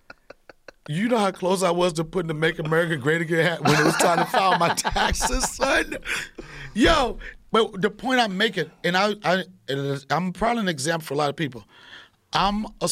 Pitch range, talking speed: 150-195 Hz, 235 wpm